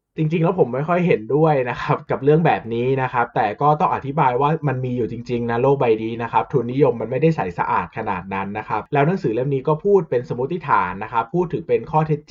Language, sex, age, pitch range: Thai, male, 20-39, 110-150 Hz